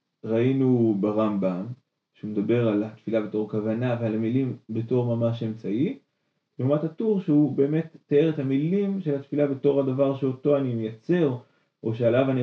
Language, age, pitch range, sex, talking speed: Hebrew, 30-49, 115-145 Hz, male, 145 wpm